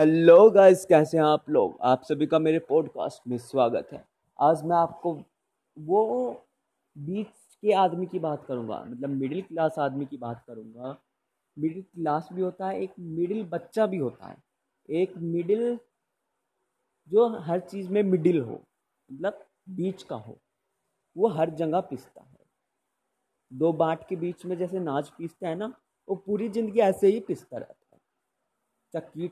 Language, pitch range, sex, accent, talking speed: Hindi, 155-190 Hz, male, native, 160 wpm